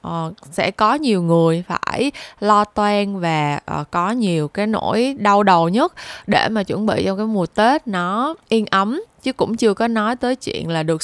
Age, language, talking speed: 20-39, Vietnamese, 190 wpm